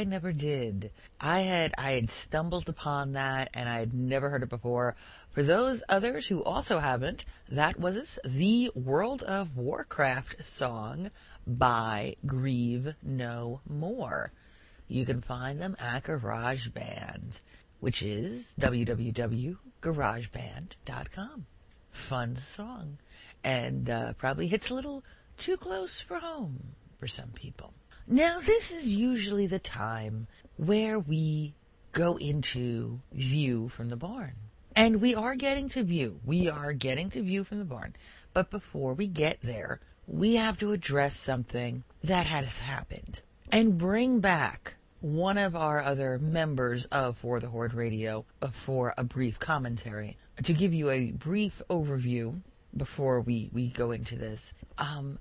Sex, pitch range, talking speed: female, 120-185 Hz, 140 wpm